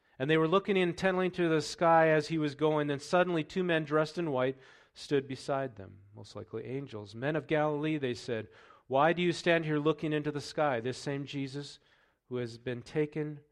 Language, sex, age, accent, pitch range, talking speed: English, male, 40-59, American, 115-155 Hz, 205 wpm